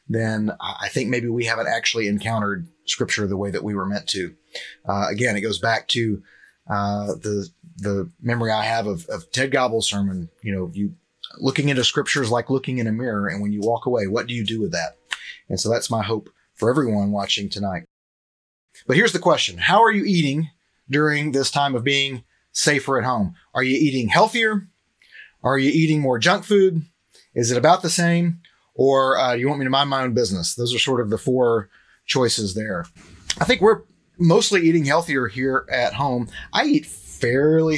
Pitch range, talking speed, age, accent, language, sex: 110-140 Hz, 200 wpm, 30-49, American, English, male